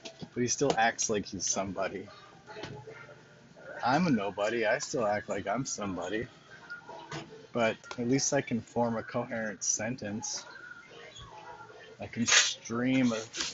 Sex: male